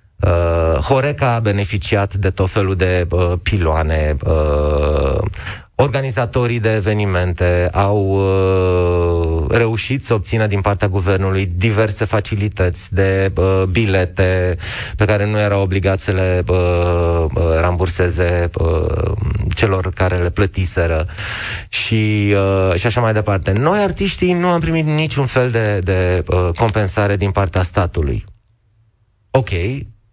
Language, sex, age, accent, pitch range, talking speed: Romanian, male, 30-49, native, 95-125 Hz, 125 wpm